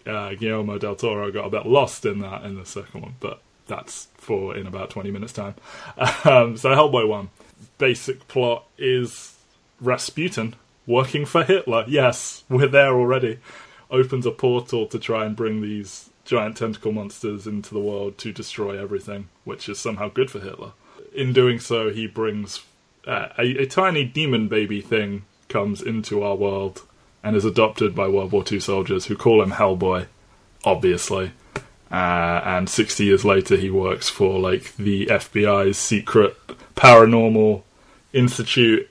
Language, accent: English, British